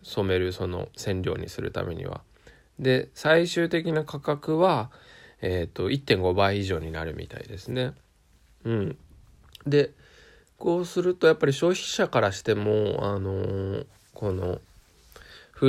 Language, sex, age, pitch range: Japanese, male, 20-39, 95-135 Hz